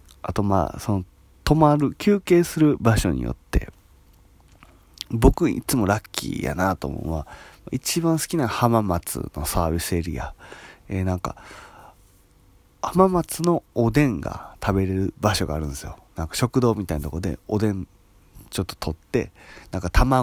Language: Japanese